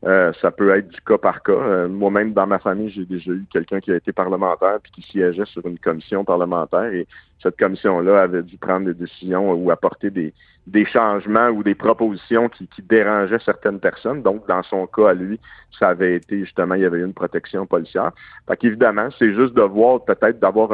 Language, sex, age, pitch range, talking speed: French, male, 50-69, 95-110 Hz, 215 wpm